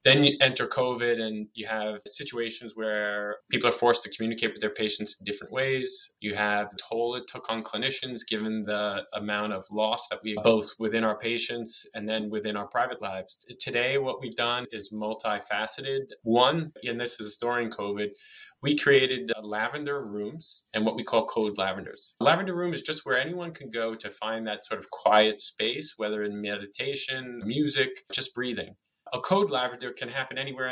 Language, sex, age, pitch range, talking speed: English, male, 20-39, 110-135 Hz, 180 wpm